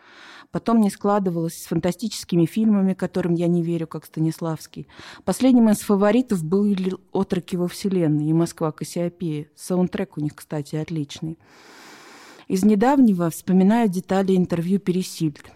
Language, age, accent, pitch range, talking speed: Russian, 20-39, native, 160-195 Hz, 125 wpm